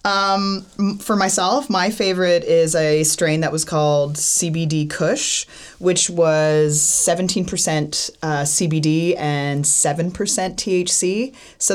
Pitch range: 140-170 Hz